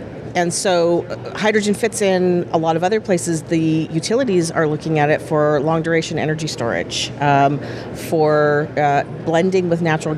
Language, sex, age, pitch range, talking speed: English, female, 40-59, 140-165 Hz, 160 wpm